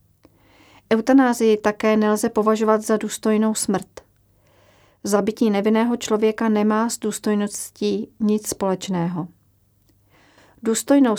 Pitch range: 180-225 Hz